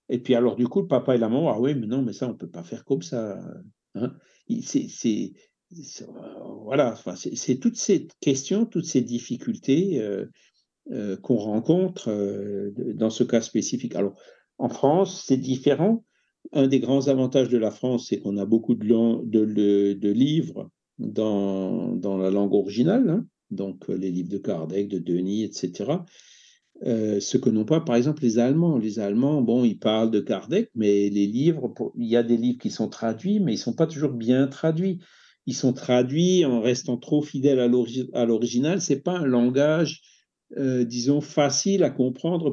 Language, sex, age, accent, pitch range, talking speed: French, male, 60-79, French, 115-150 Hz, 200 wpm